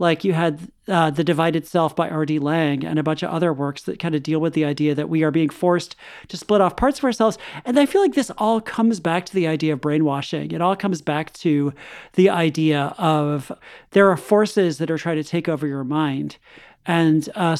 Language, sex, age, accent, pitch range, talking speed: English, male, 40-59, American, 160-200 Hz, 230 wpm